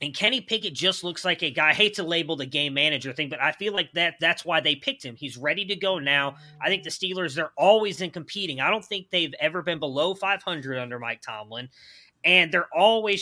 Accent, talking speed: American, 235 wpm